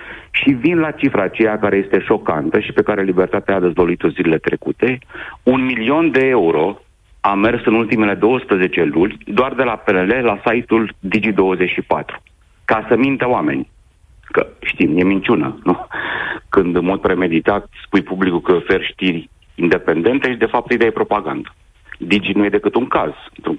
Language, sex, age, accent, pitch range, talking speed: Romanian, male, 40-59, native, 90-115 Hz, 170 wpm